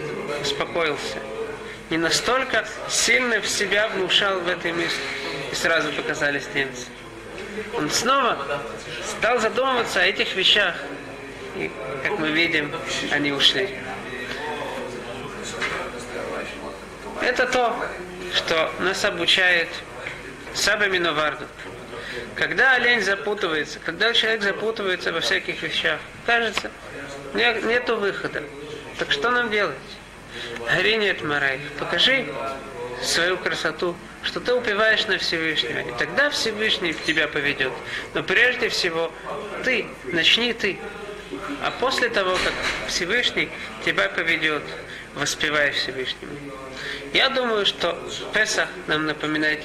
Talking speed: 105 wpm